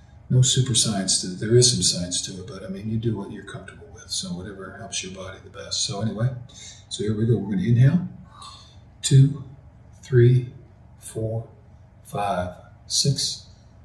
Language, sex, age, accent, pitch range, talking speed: English, male, 50-69, American, 100-120 Hz, 210 wpm